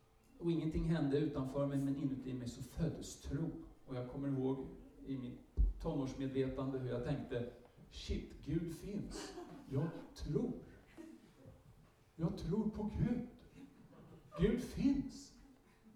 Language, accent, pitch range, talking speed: Swedish, Norwegian, 115-185 Hz, 120 wpm